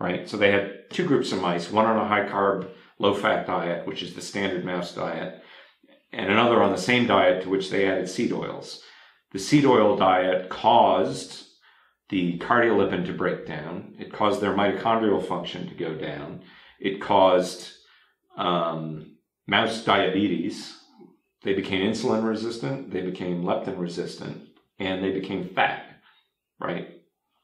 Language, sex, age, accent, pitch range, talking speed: English, male, 40-59, American, 90-110 Hz, 155 wpm